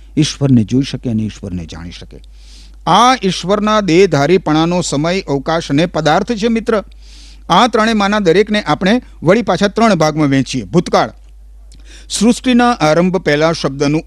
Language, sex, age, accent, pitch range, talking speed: Gujarati, male, 50-69, native, 140-195 Hz, 50 wpm